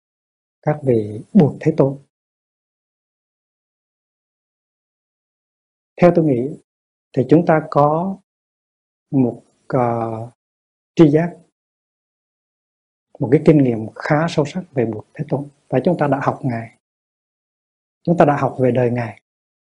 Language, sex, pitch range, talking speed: Vietnamese, male, 125-160 Hz, 120 wpm